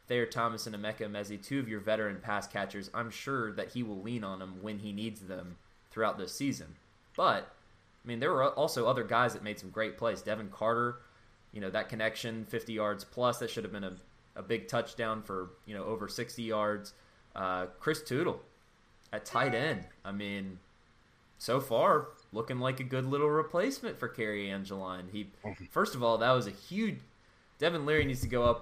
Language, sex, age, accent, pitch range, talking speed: English, male, 20-39, American, 100-125 Hz, 200 wpm